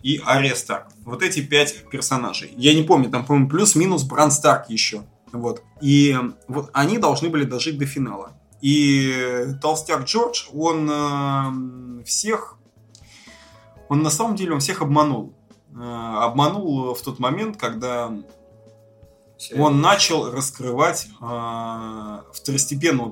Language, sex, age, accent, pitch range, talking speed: Russian, male, 20-39, native, 120-150 Hz, 120 wpm